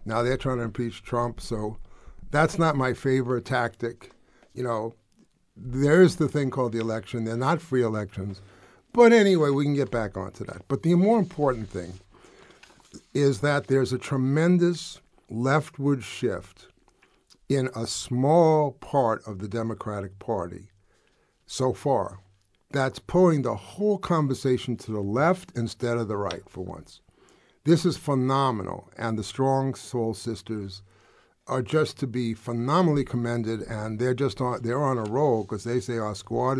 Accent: American